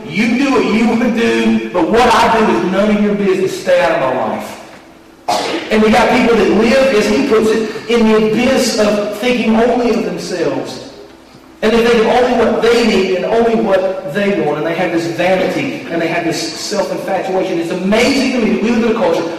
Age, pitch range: 40-59, 190-245 Hz